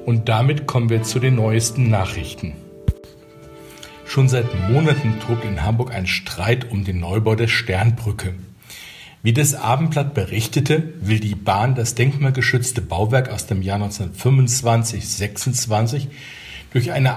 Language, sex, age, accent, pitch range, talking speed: German, male, 50-69, German, 110-135 Hz, 130 wpm